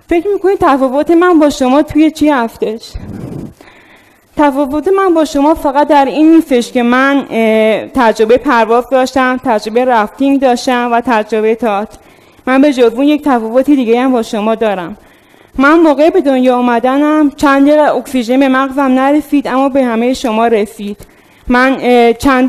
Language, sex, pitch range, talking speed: Persian, female, 235-285 Hz, 150 wpm